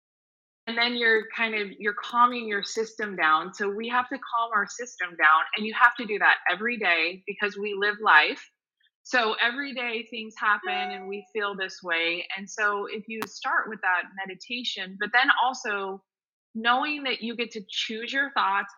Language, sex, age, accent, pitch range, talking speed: English, female, 20-39, American, 195-235 Hz, 190 wpm